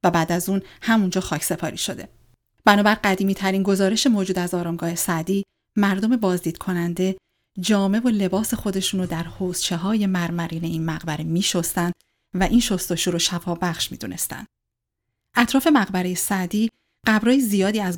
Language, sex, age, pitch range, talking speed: Persian, female, 30-49, 170-210 Hz, 145 wpm